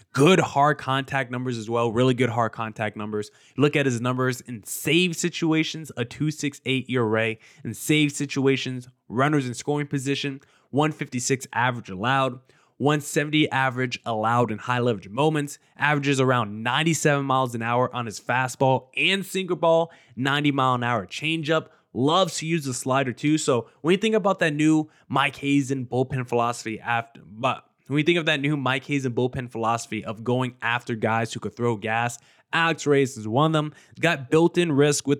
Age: 20-39